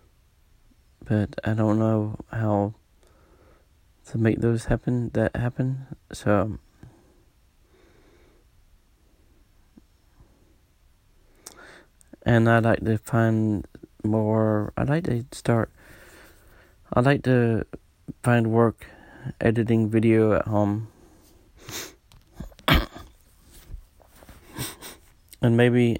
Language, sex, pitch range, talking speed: English, male, 100-115 Hz, 75 wpm